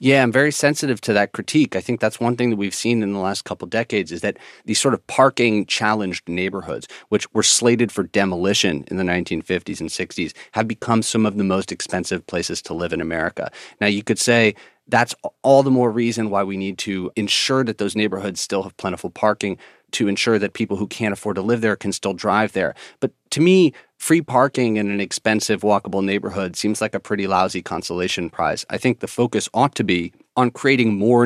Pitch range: 95-120 Hz